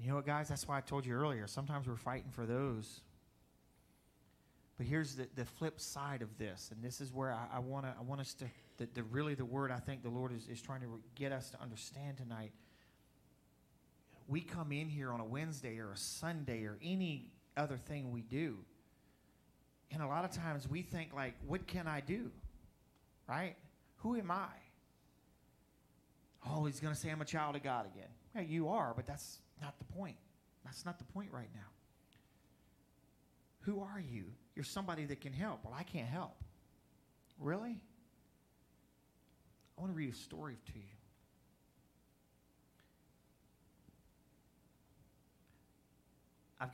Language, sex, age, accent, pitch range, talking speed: English, male, 40-59, American, 105-150 Hz, 170 wpm